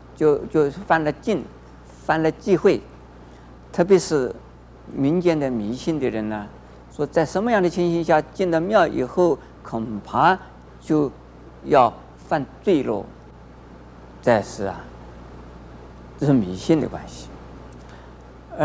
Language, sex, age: Chinese, male, 50-69